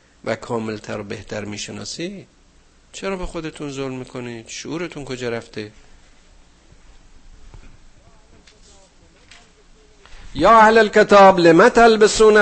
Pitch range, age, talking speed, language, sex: 115-165 Hz, 50-69, 75 wpm, Persian, male